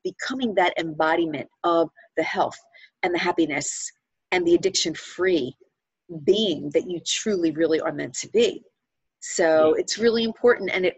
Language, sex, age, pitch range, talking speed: English, female, 40-59, 170-265 Hz, 150 wpm